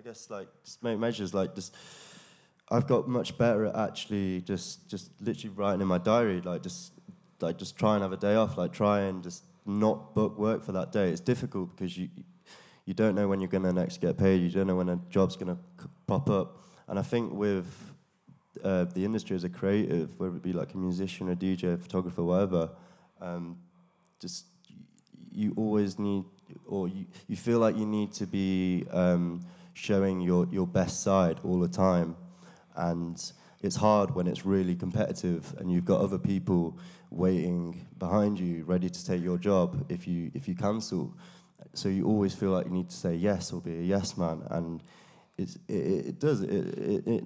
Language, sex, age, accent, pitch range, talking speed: English, male, 20-39, British, 90-110 Hz, 200 wpm